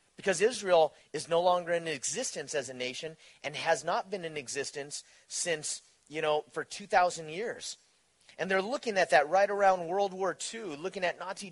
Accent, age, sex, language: American, 30-49, male, English